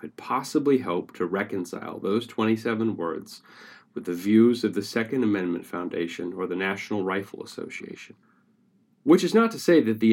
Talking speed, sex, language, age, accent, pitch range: 165 wpm, male, English, 30-49, American, 100-145 Hz